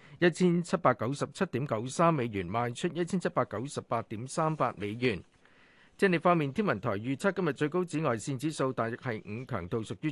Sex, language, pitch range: male, Chinese, 120-160 Hz